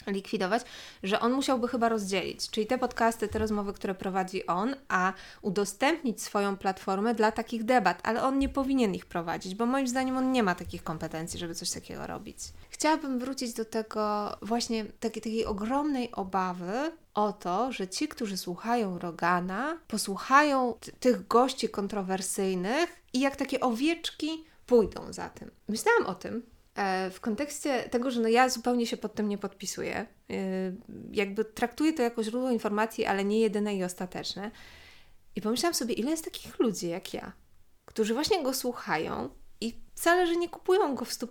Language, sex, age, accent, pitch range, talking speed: Polish, female, 20-39, native, 200-260 Hz, 165 wpm